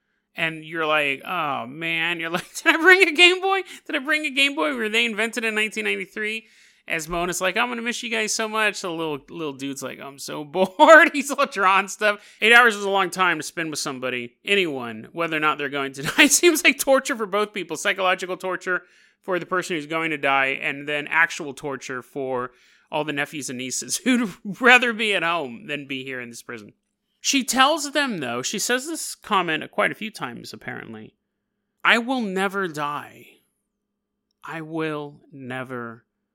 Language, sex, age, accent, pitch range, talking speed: English, male, 30-49, American, 150-215 Hz, 205 wpm